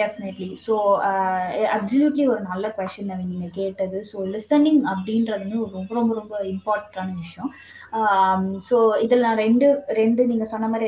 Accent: native